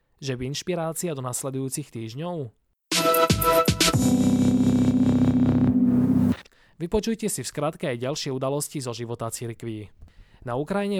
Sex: male